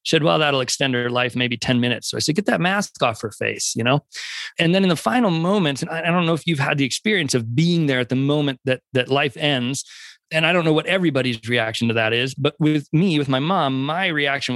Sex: male